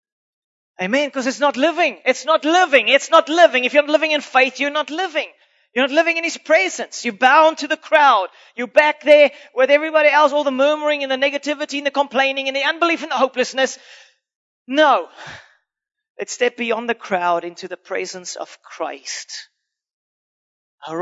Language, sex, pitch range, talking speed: English, male, 205-280 Hz, 185 wpm